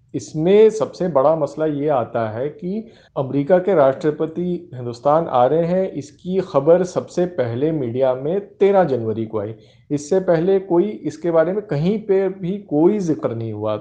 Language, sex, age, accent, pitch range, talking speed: Hindi, male, 50-69, native, 130-180 Hz, 165 wpm